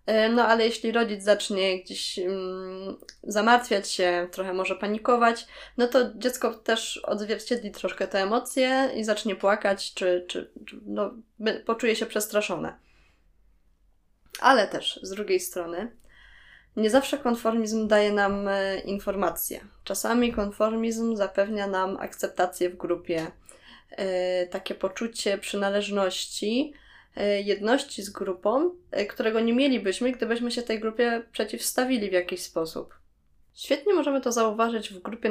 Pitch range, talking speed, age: 185-230 Hz, 120 wpm, 20-39